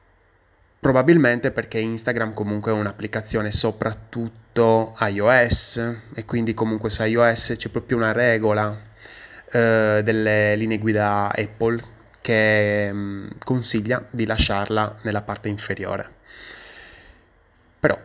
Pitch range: 105-120 Hz